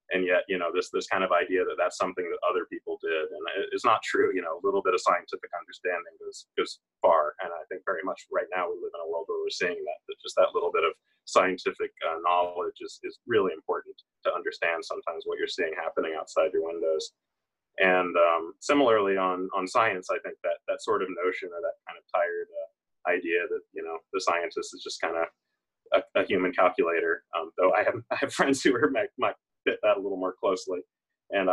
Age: 30-49